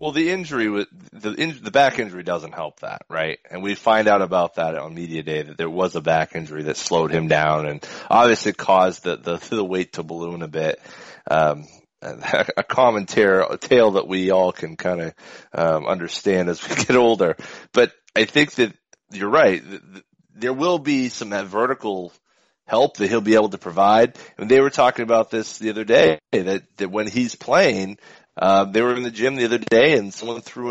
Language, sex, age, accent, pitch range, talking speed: English, male, 30-49, American, 90-125 Hz, 200 wpm